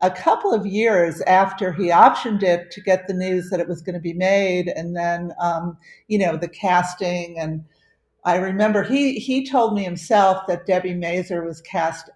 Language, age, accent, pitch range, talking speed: English, 50-69, American, 175-210 Hz, 190 wpm